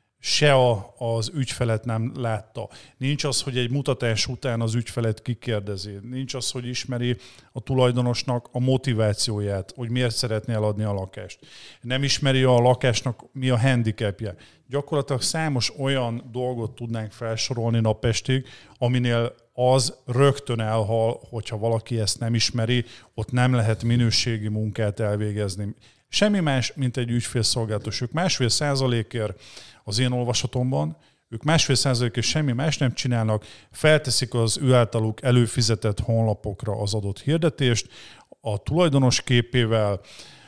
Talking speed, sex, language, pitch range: 130 wpm, male, Hungarian, 110-130 Hz